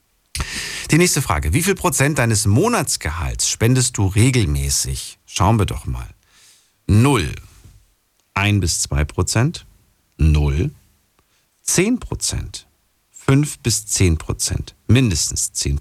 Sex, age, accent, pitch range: male, 50-69, German, 90-130 Hz